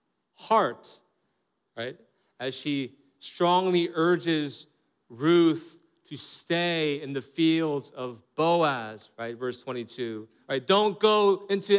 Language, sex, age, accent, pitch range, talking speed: English, male, 40-59, American, 140-190 Hz, 105 wpm